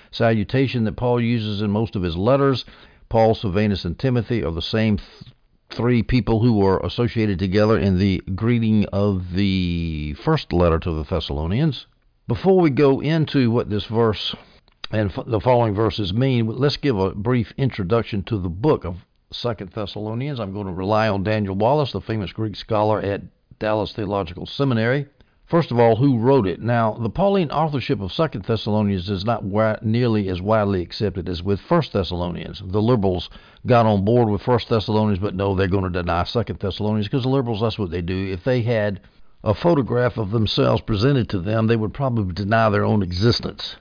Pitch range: 100-120 Hz